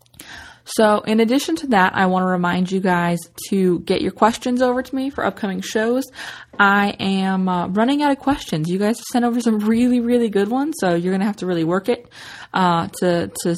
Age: 20-39